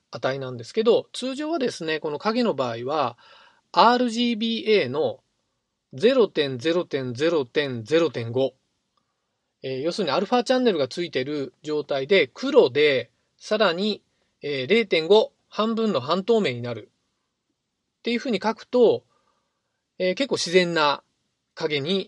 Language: Japanese